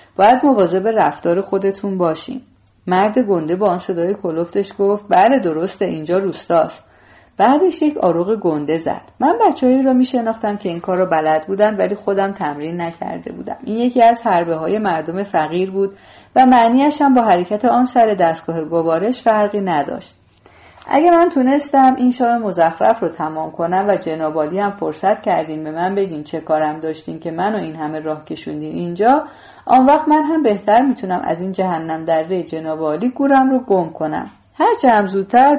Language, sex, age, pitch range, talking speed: Persian, female, 40-59, 160-230 Hz, 165 wpm